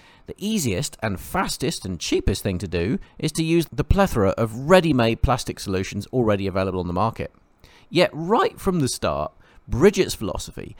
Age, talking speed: 40-59, 165 wpm